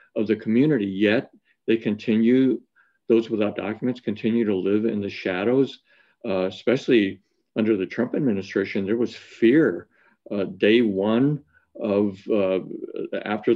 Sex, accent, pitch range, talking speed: male, American, 105-125 Hz, 135 wpm